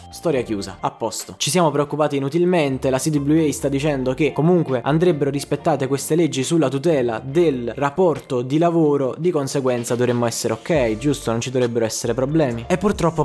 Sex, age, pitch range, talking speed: male, 20-39, 115-155 Hz, 170 wpm